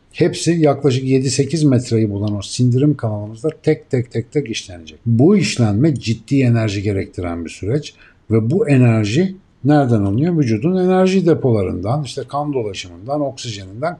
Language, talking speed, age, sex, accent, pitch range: Turkish, 135 wpm, 60-79, male, native, 105-140 Hz